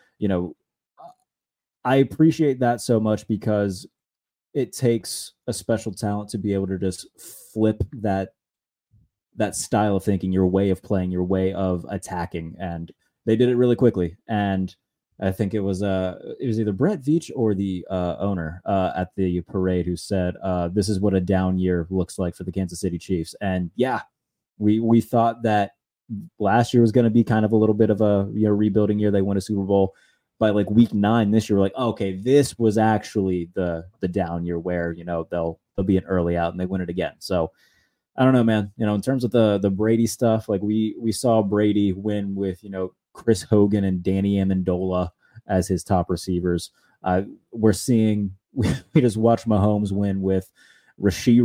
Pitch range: 95-110 Hz